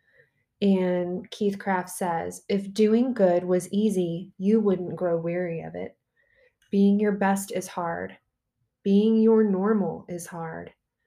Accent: American